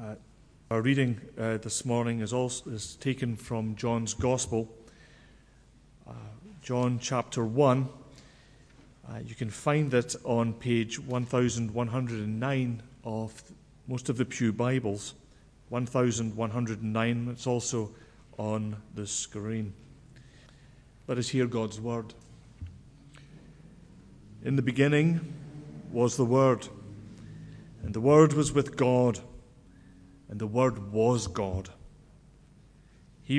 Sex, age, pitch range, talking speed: male, 40-59, 115-135 Hz, 105 wpm